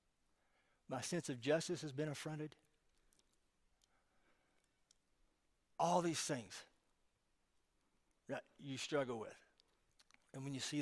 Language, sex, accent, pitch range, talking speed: English, male, American, 120-150 Hz, 100 wpm